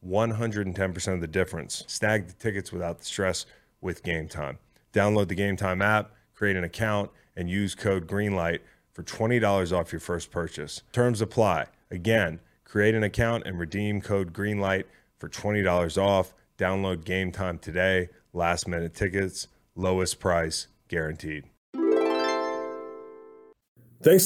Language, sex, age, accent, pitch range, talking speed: English, male, 30-49, American, 95-120 Hz, 135 wpm